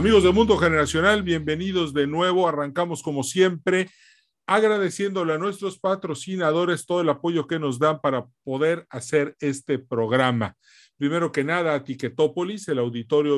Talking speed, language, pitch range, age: 140 wpm, Spanish, 135-170 Hz, 40-59